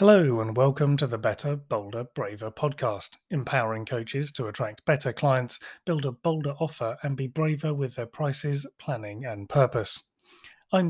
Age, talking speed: 30-49, 160 wpm